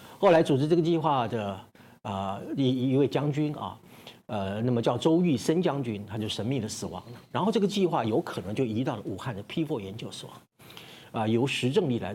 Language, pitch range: Chinese, 110-145 Hz